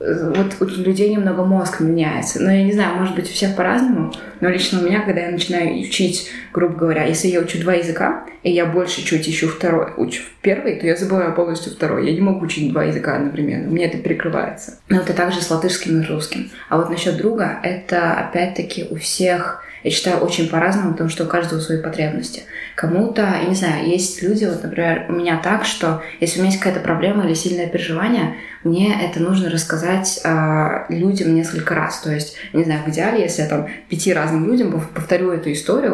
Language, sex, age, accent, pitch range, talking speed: Russian, female, 20-39, native, 160-185 Hz, 205 wpm